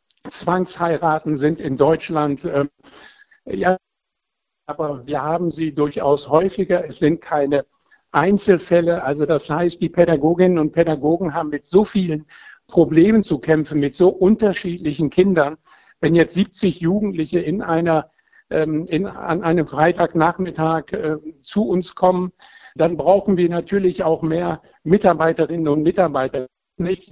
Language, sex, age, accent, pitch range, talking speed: German, male, 60-79, German, 150-180 Hz, 130 wpm